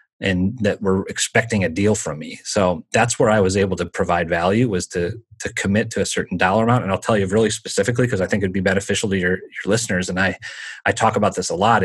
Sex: male